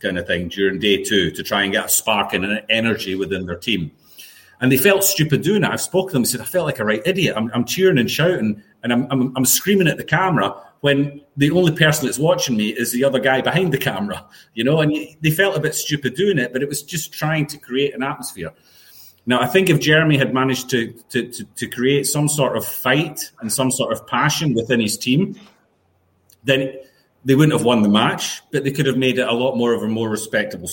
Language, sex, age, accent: English, male, 30-49, British